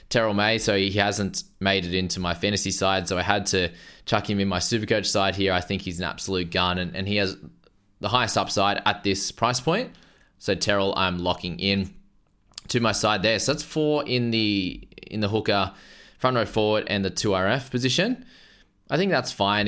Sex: male